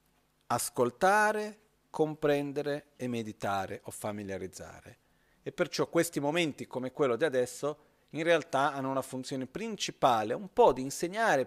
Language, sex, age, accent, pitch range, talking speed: Italian, male, 40-59, native, 115-145 Hz, 125 wpm